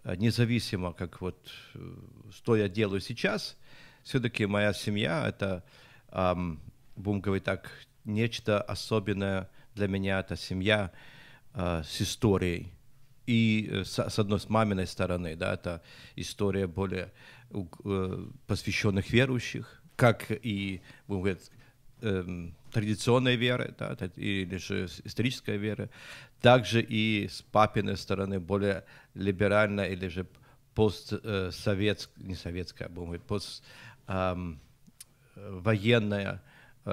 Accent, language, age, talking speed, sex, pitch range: native, Ukrainian, 50-69, 95 wpm, male, 95-120 Hz